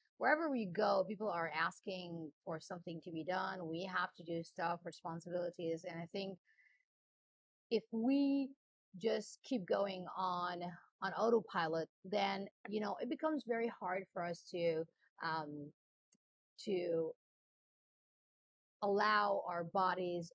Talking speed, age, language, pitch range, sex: 125 wpm, 40-59, English, 175-215 Hz, female